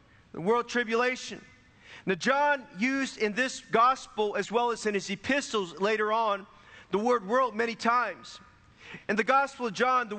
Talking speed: 160 wpm